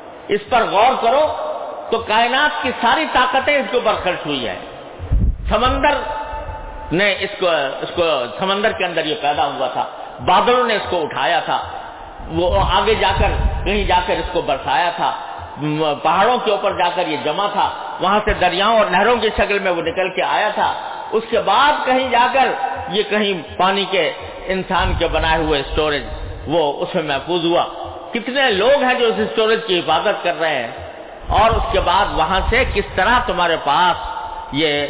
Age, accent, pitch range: 50-69, Indian, 175-260 Hz